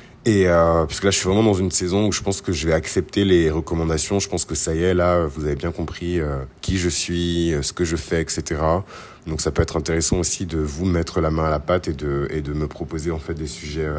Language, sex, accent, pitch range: French, male, French, 80-100 Hz